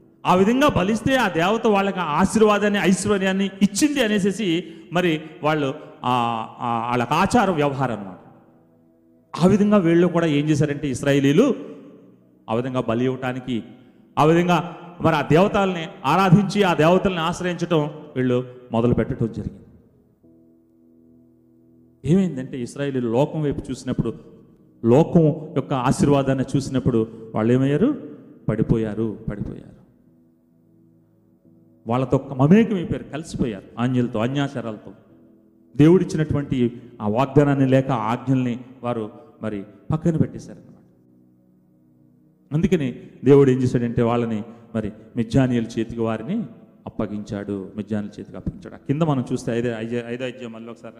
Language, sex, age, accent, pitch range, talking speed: Telugu, male, 30-49, native, 110-155 Hz, 100 wpm